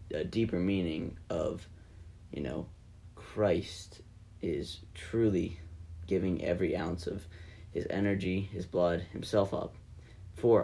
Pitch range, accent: 85-100 Hz, American